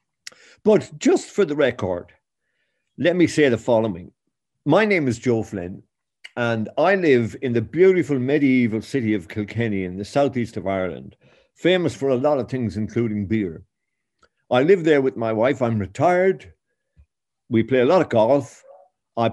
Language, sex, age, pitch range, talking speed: English, male, 50-69, 110-140 Hz, 165 wpm